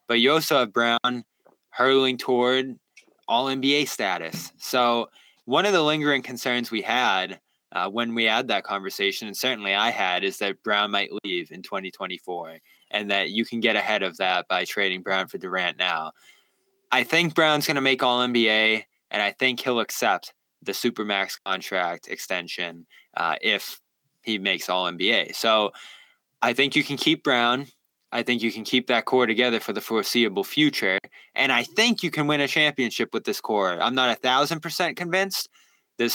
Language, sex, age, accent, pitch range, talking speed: English, male, 20-39, American, 110-140 Hz, 175 wpm